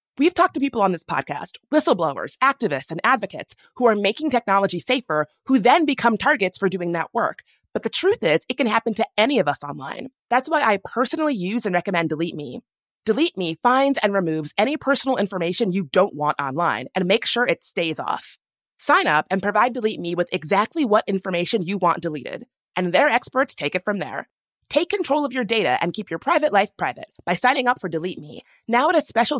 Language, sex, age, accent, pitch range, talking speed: English, female, 30-49, American, 175-250 Hz, 210 wpm